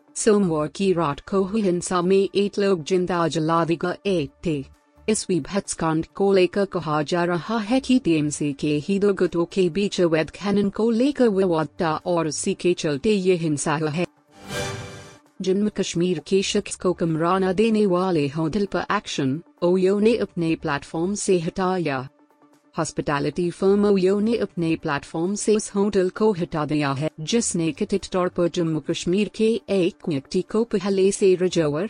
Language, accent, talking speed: Hindi, native, 140 wpm